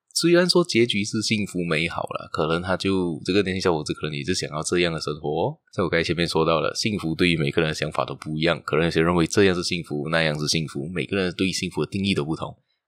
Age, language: 20-39, Chinese